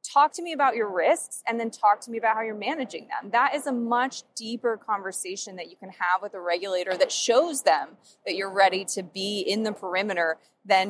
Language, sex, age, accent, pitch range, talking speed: English, female, 20-39, American, 180-215 Hz, 225 wpm